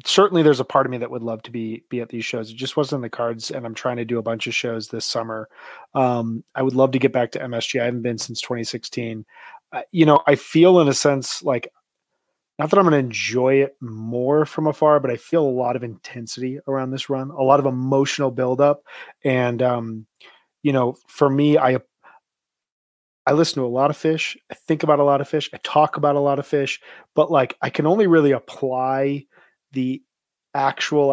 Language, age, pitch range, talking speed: English, 30-49, 120-145 Hz, 225 wpm